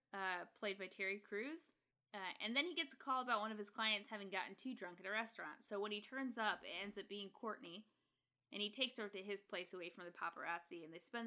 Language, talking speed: English, 255 wpm